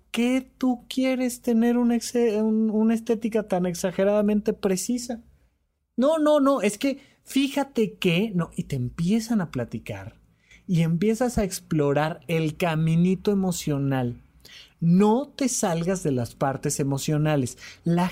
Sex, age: male, 30-49